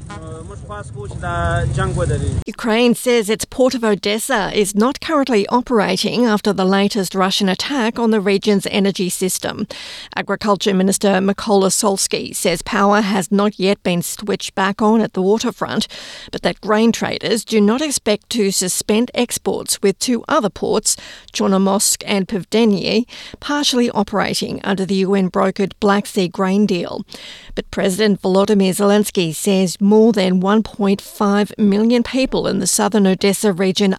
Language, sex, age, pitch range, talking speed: English, female, 40-59, 195-225 Hz, 140 wpm